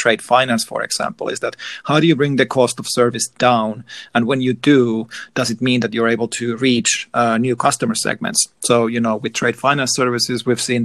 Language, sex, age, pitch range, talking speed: English, male, 40-59, 115-130 Hz, 220 wpm